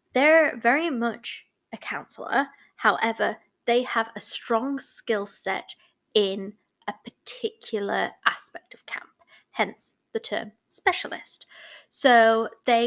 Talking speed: 110 wpm